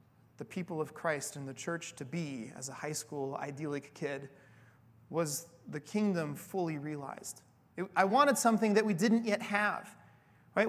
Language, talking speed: English, 165 wpm